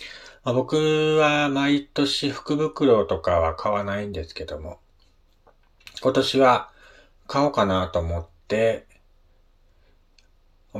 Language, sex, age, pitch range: Japanese, male, 40-59, 85-120 Hz